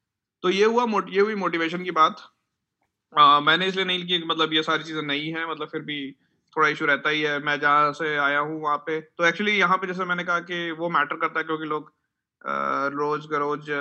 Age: 30-49